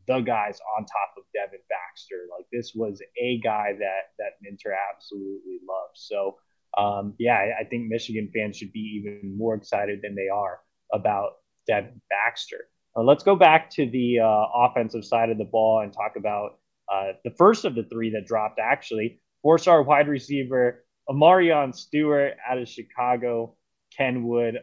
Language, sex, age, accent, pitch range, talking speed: English, male, 20-39, American, 105-120 Hz, 170 wpm